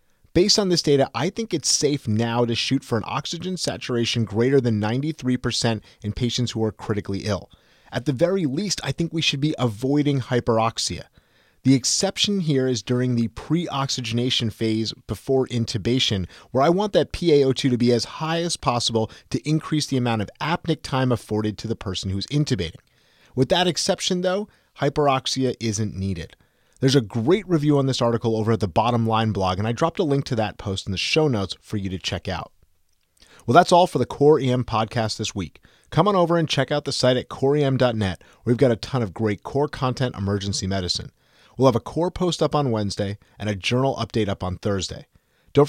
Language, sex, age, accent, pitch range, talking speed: English, male, 30-49, American, 110-150 Hz, 200 wpm